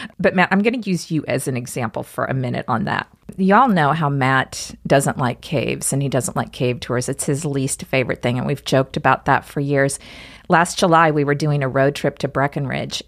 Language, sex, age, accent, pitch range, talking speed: English, female, 40-59, American, 140-180 Hz, 230 wpm